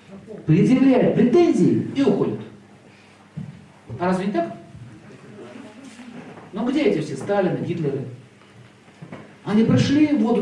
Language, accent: Russian, native